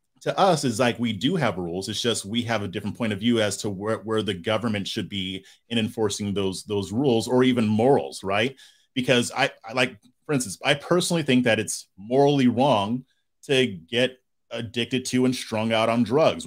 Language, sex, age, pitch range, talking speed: English, male, 30-49, 105-130 Hz, 205 wpm